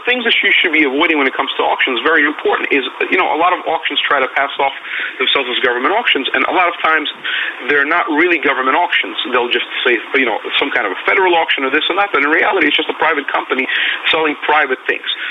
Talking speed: 250 wpm